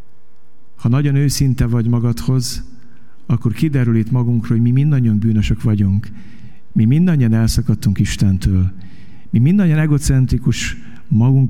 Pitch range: 100-130 Hz